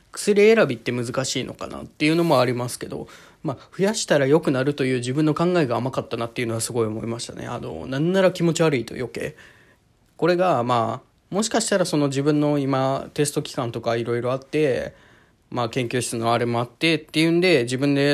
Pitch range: 115-145 Hz